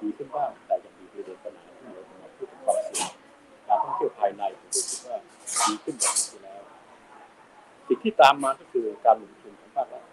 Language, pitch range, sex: Thai, 335-450 Hz, male